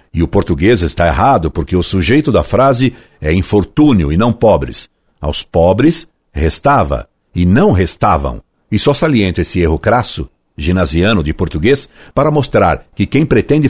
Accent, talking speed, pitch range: Brazilian, 155 wpm, 90-115 Hz